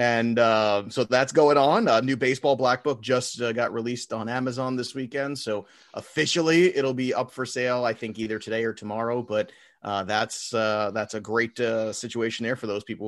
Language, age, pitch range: English, 30-49, 110-140 Hz